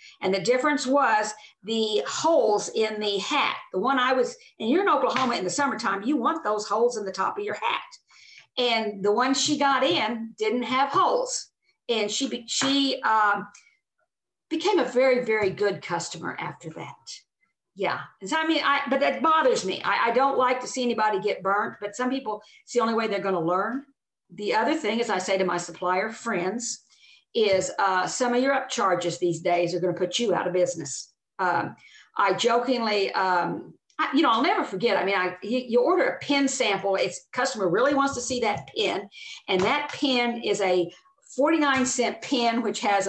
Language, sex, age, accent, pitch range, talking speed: English, female, 50-69, American, 195-275 Hz, 200 wpm